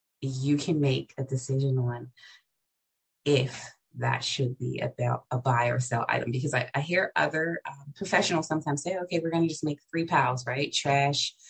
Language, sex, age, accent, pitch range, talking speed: English, female, 20-39, American, 130-145 Hz, 185 wpm